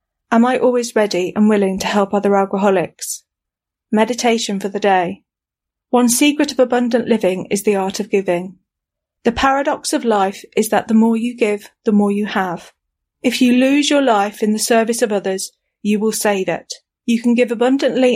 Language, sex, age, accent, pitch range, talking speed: English, female, 40-59, British, 190-230 Hz, 185 wpm